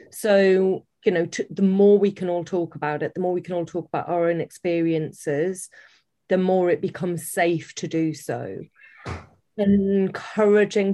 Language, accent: English, British